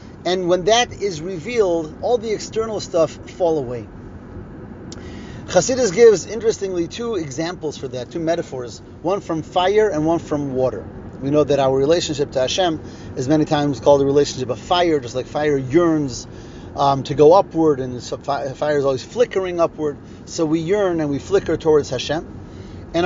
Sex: male